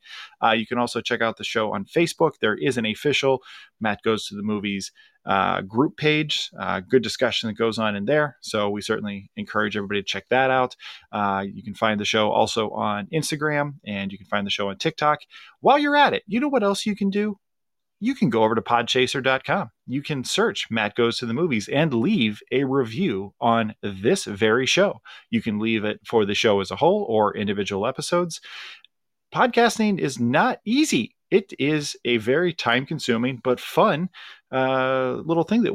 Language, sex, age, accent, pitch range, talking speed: English, male, 30-49, American, 110-160 Hz, 195 wpm